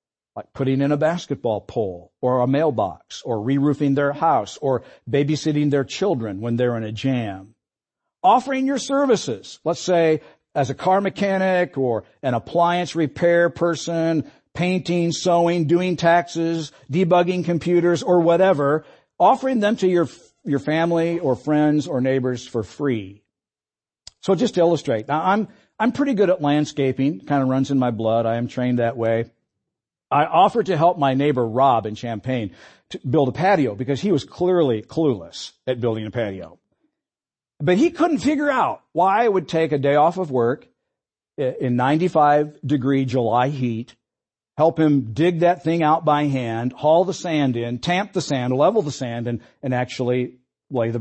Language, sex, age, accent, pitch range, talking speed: English, male, 50-69, American, 125-170 Hz, 165 wpm